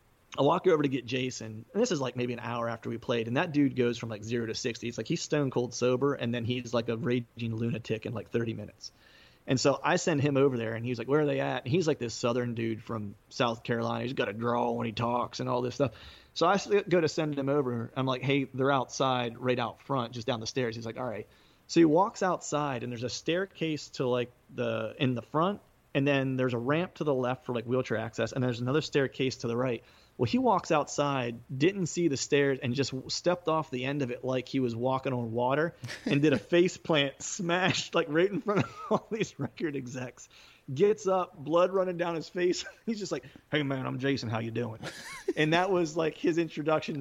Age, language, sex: 30-49, English, male